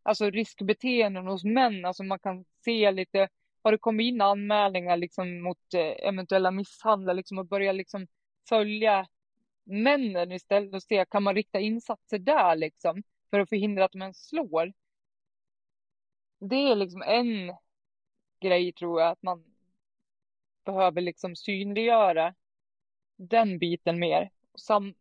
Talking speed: 130 wpm